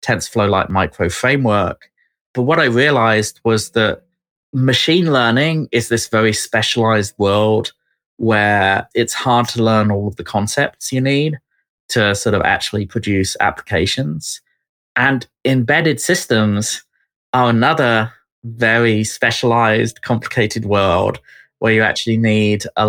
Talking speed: 120 wpm